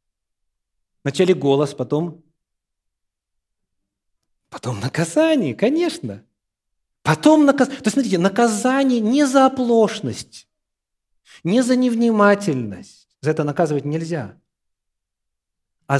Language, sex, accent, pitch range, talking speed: Russian, male, native, 110-155 Hz, 85 wpm